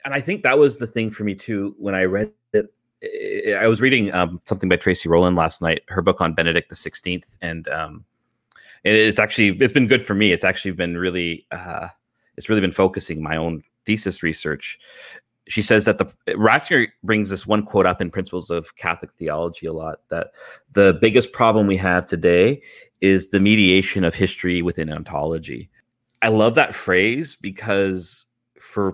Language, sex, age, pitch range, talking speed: English, male, 30-49, 85-105 Hz, 185 wpm